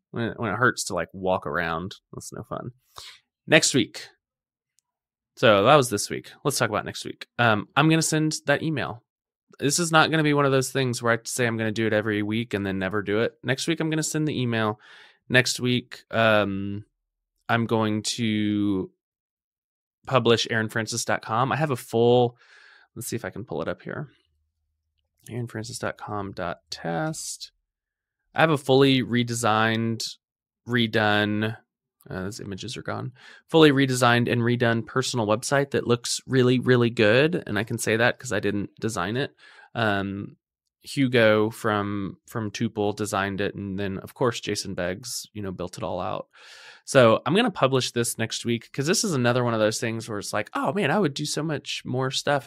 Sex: male